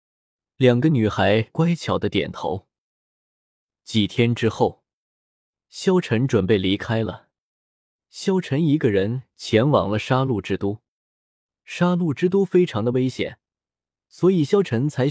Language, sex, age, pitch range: Chinese, male, 20-39, 105-155 Hz